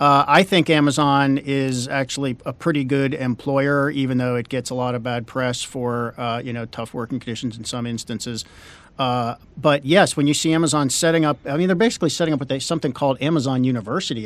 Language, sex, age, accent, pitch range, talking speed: English, male, 50-69, American, 125-150 Hz, 200 wpm